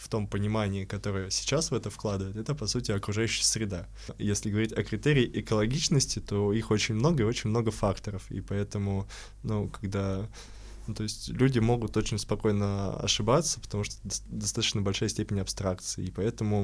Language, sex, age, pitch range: Russian, male, 20-39, 100-115 Hz